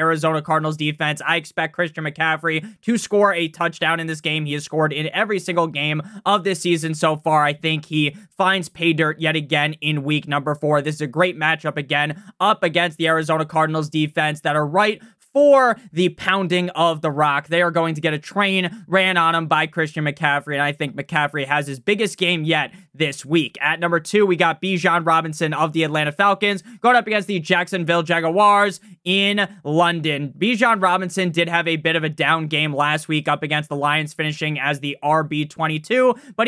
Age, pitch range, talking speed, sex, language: 20-39, 150-180 Hz, 200 wpm, male, English